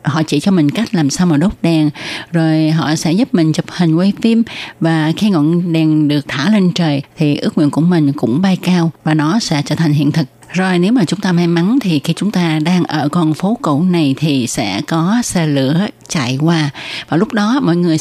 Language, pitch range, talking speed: Vietnamese, 150-185 Hz, 235 wpm